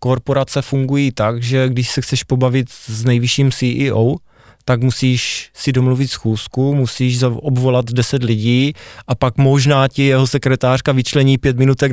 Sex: male